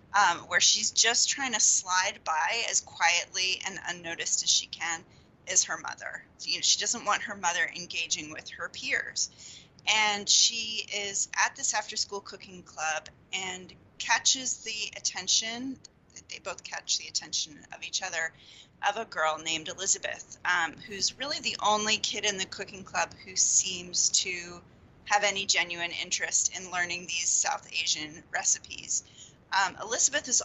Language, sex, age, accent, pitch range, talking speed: English, female, 30-49, American, 180-220 Hz, 160 wpm